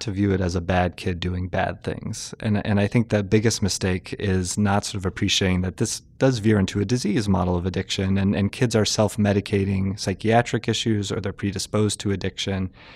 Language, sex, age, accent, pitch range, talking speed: English, male, 30-49, American, 90-105 Hz, 205 wpm